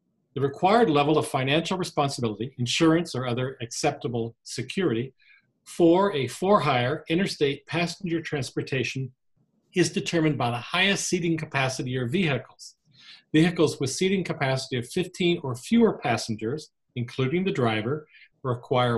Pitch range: 130-165 Hz